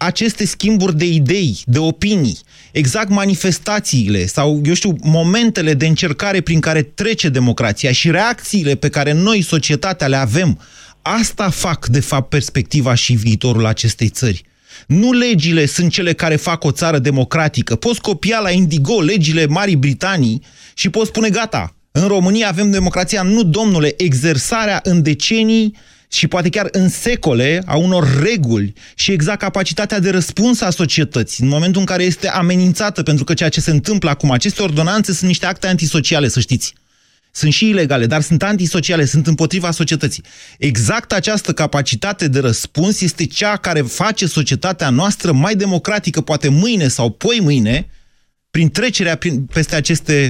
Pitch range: 145-190 Hz